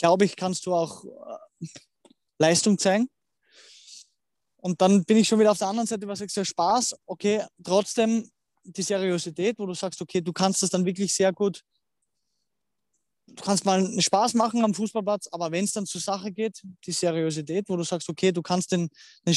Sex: male